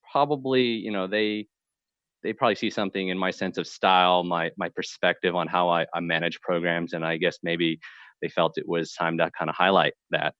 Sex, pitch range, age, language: male, 95-155 Hz, 30-49, English